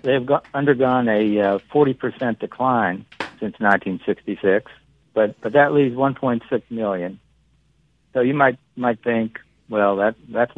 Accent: American